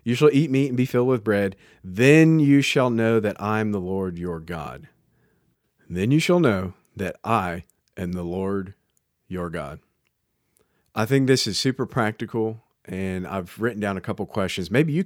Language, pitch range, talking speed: English, 90-120 Hz, 185 wpm